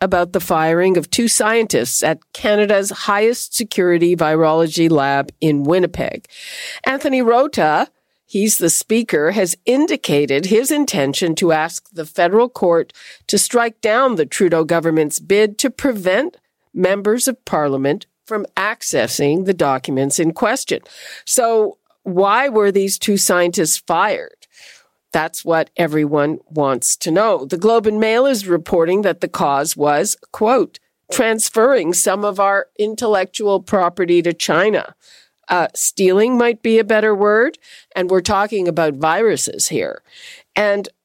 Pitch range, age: 165-225 Hz, 50-69